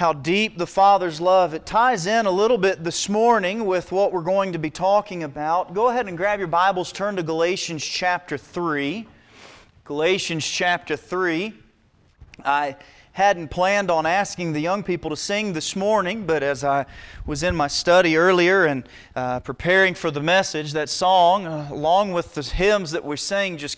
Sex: male